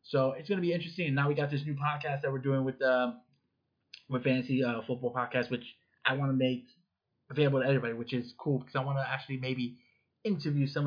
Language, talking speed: English, 225 wpm